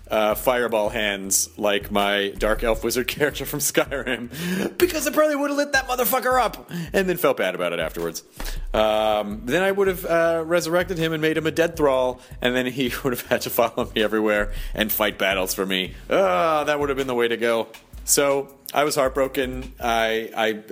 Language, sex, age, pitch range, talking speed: English, male, 30-49, 105-155 Hz, 205 wpm